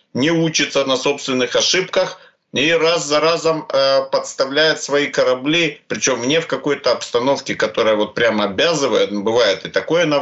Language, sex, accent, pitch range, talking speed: Ukrainian, male, native, 130-195 Hz, 155 wpm